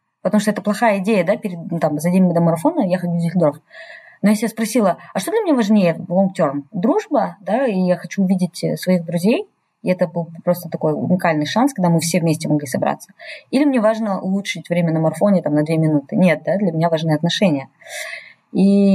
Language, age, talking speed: Russian, 20-39, 210 wpm